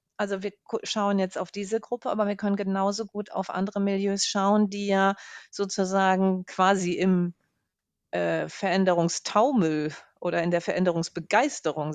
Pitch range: 180-205 Hz